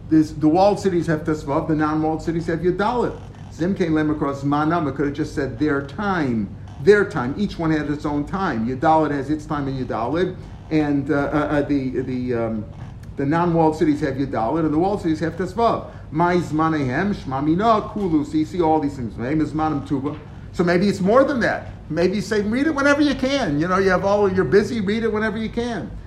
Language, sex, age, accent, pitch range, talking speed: English, male, 50-69, American, 145-175 Hz, 200 wpm